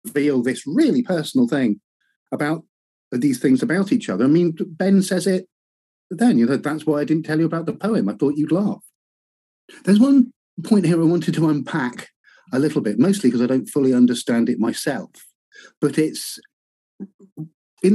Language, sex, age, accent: English, male, 50-69, British